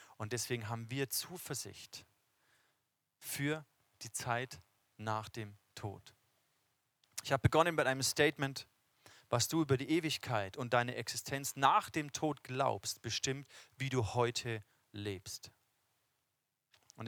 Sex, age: male, 30-49